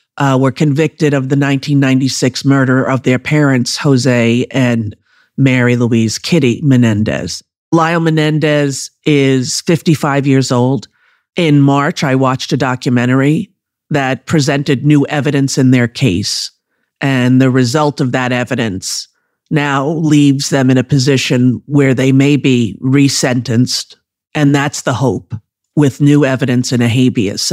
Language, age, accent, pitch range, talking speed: English, 40-59, American, 125-150 Hz, 135 wpm